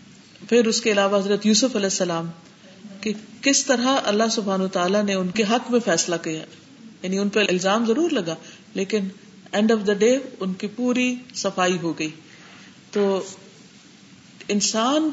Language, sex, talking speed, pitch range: Urdu, female, 160 wpm, 190-235 Hz